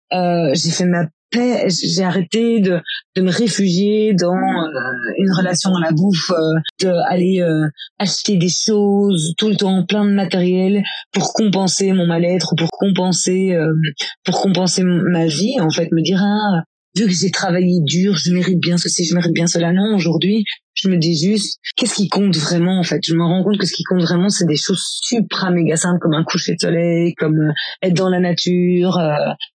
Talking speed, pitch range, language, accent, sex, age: 205 wpm, 170-200 Hz, French, French, female, 20-39